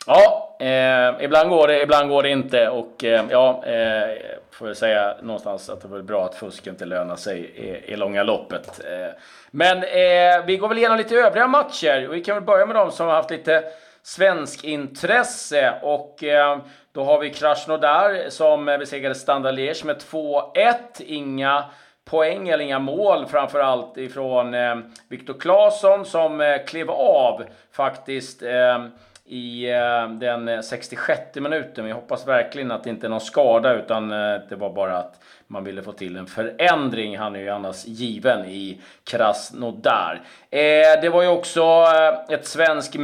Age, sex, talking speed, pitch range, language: 30-49, male, 165 wpm, 125-160 Hz, Swedish